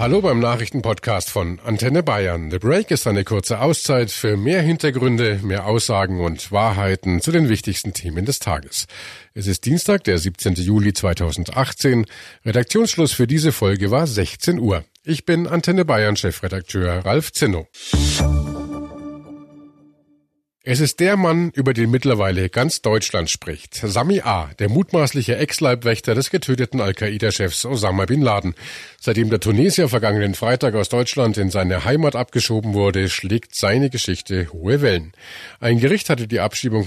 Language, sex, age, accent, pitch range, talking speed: German, male, 50-69, German, 95-140 Hz, 145 wpm